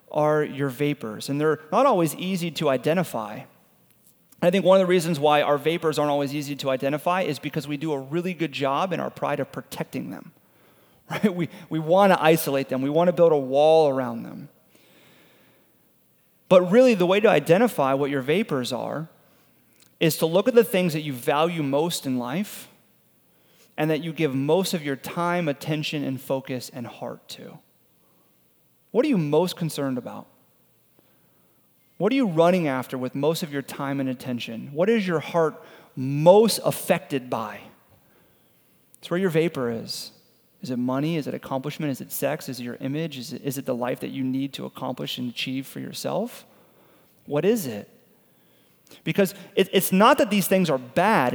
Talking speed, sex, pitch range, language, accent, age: 180 wpm, male, 140-180 Hz, English, American, 30-49